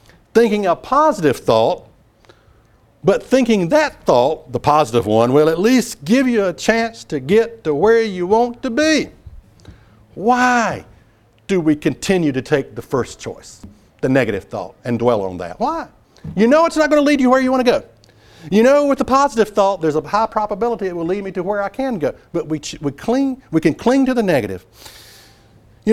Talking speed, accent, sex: 200 wpm, American, male